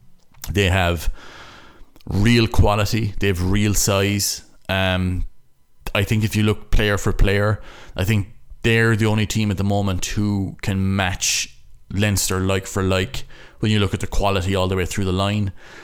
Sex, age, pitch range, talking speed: male, 30-49, 90-105 Hz, 170 wpm